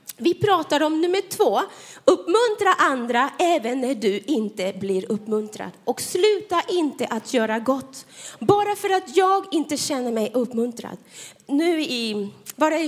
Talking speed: 140 wpm